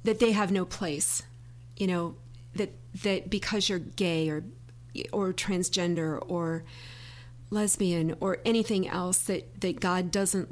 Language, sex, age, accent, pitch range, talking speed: English, female, 40-59, American, 120-200 Hz, 135 wpm